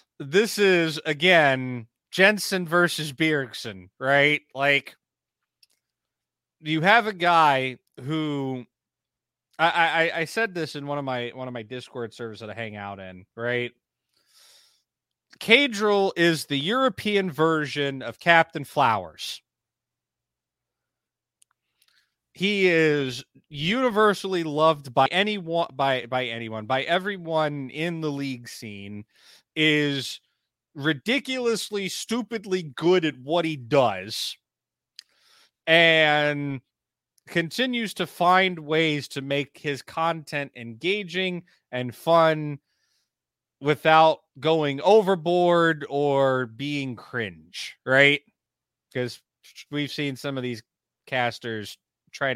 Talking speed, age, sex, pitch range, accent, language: 105 wpm, 30-49, male, 125-170 Hz, American, English